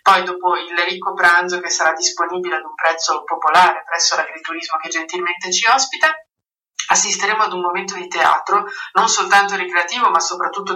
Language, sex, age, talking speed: Italian, female, 30-49, 160 wpm